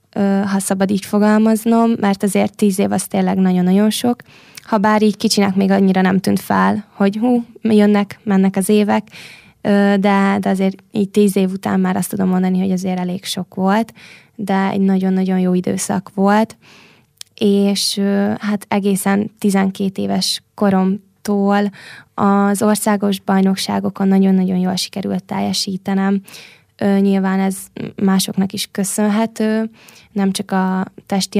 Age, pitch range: 20-39, 190-205 Hz